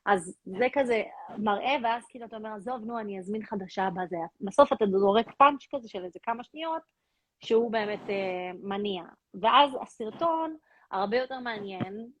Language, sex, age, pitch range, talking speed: Hebrew, female, 30-49, 195-245 Hz, 155 wpm